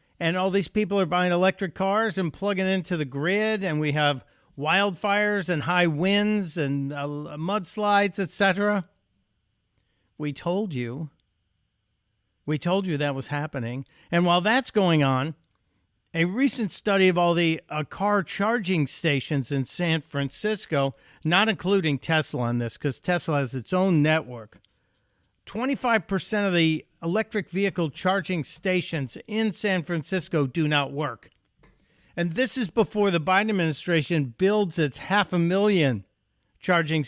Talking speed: 145 wpm